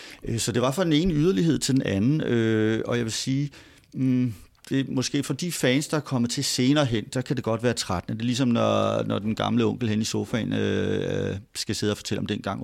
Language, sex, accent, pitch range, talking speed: Danish, male, native, 105-130 Hz, 240 wpm